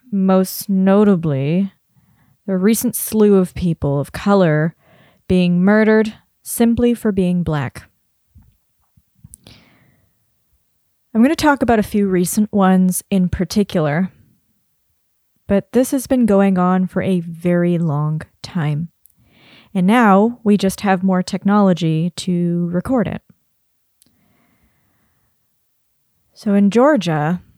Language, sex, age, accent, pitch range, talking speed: English, female, 20-39, American, 175-205 Hz, 110 wpm